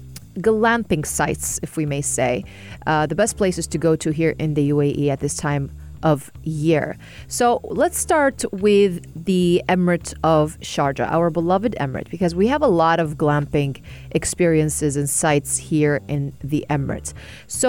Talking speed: 165 wpm